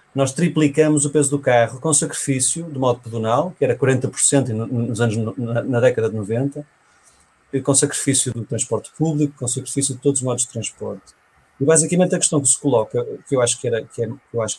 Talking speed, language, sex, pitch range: 210 wpm, Portuguese, male, 120-155 Hz